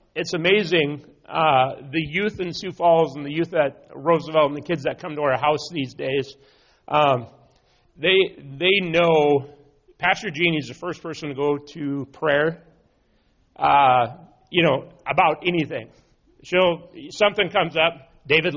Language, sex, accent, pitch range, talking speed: English, male, American, 145-195 Hz, 150 wpm